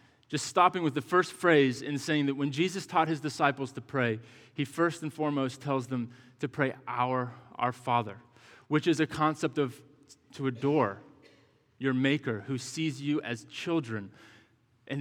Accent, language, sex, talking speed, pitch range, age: American, English, male, 170 wpm, 120-155 Hz, 30-49